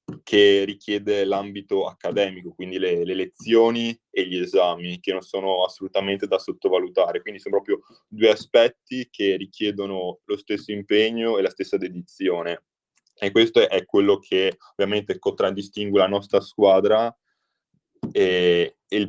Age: 20-39